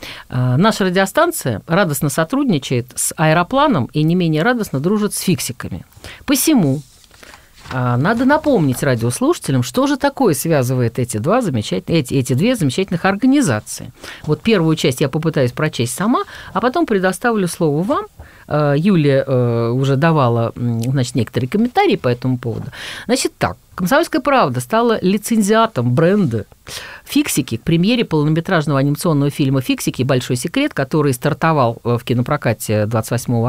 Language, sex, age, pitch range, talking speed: Russian, female, 50-69, 125-200 Hz, 120 wpm